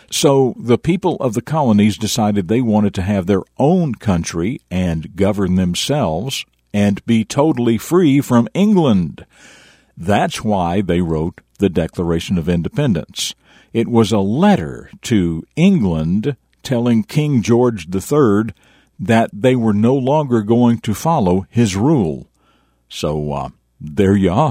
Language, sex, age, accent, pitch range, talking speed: English, male, 60-79, American, 95-130 Hz, 135 wpm